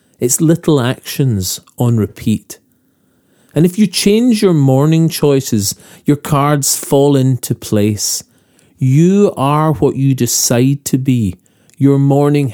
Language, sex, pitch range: English, male, 115-165 Hz